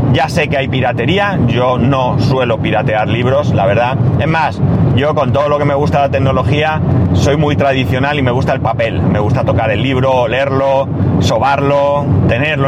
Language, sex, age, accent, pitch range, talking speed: Spanish, male, 30-49, Spanish, 125-145 Hz, 185 wpm